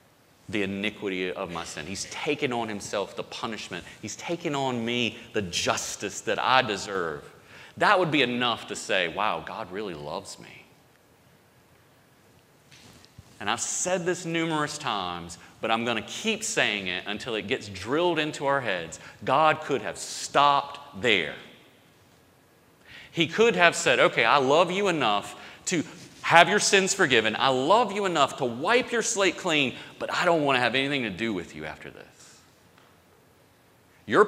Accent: American